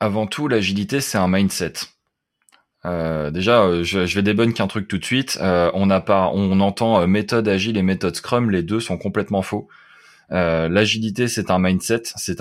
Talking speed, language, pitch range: 190 wpm, French, 95-110 Hz